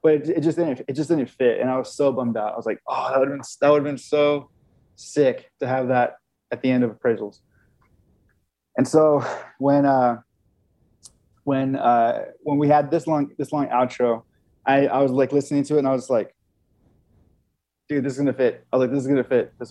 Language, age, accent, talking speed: English, 20-39, American, 225 wpm